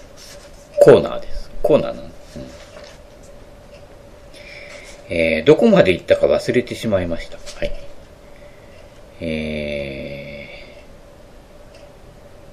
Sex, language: male, Japanese